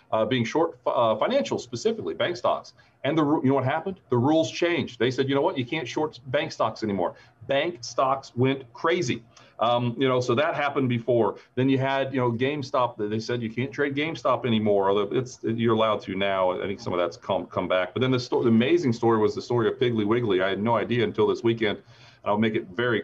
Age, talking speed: 40-59, 240 wpm